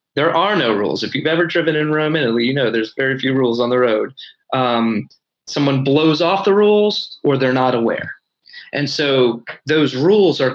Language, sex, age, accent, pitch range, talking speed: English, male, 30-49, American, 130-160 Hz, 200 wpm